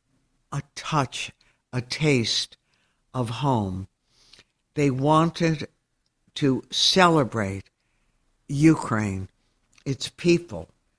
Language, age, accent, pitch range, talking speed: English, 60-79, American, 115-150 Hz, 70 wpm